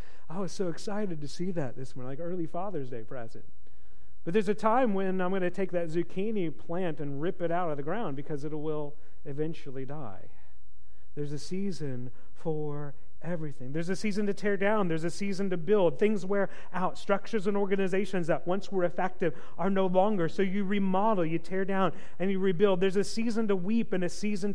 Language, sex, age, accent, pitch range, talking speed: English, male, 40-59, American, 165-200 Hz, 205 wpm